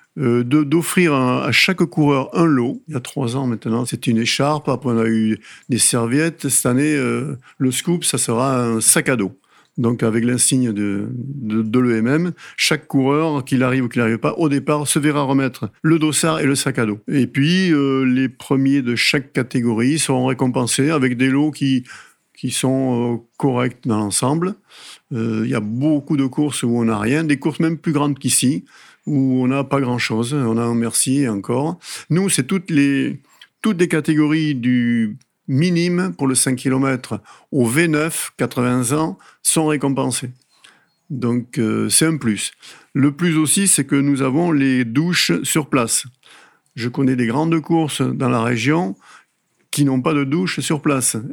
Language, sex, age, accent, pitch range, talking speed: French, male, 50-69, French, 120-150 Hz, 185 wpm